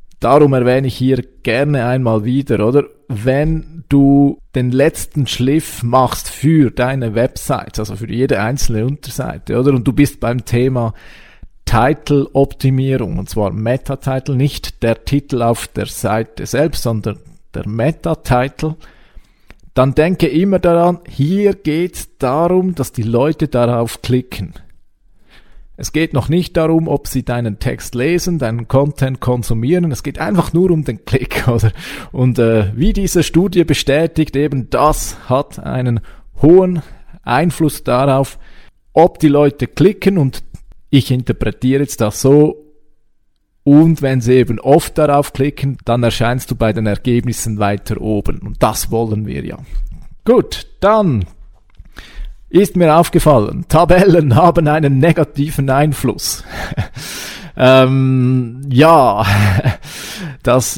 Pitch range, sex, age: 115-150 Hz, male, 40-59